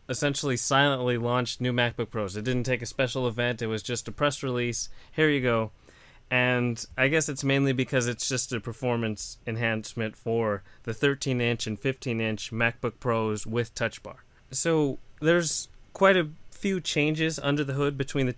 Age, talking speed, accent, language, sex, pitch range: 30-49, 175 wpm, American, English, male, 115-135 Hz